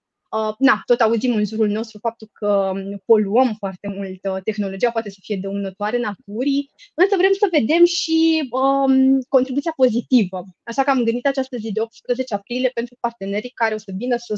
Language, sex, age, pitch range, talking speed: Romanian, female, 20-39, 205-245 Hz, 175 wpm